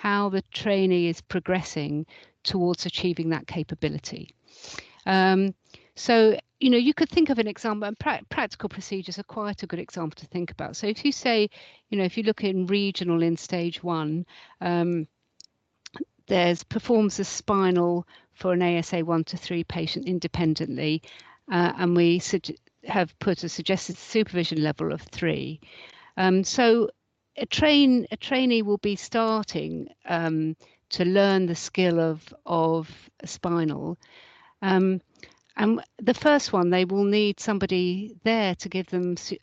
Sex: female